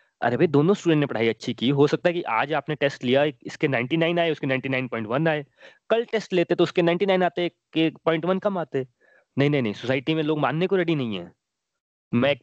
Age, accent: 20-39, native